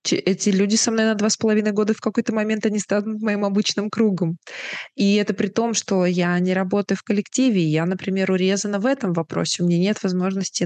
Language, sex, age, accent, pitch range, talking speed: Russian, female, 20-39, native, 185-215 Hz, 210 wpm